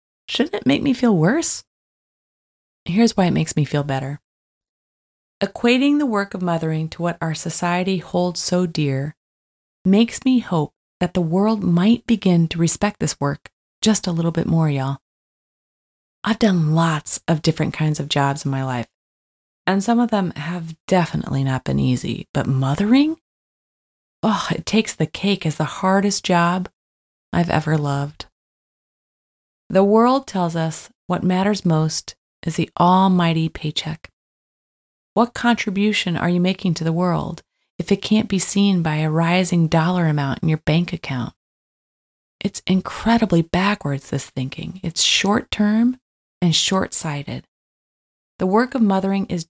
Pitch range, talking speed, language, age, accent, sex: 155-200 Hz, 150 wpm, English, 20-39, American, female